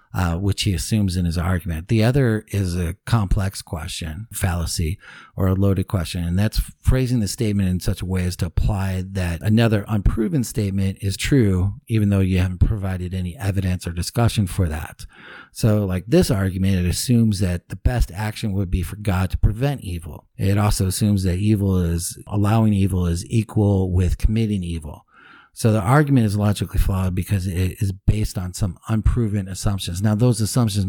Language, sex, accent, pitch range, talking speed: English, male, American, 90-110 Hz, 185 wpm